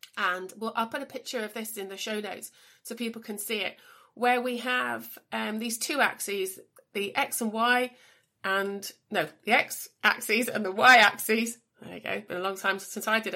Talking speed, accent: 205 wpm, British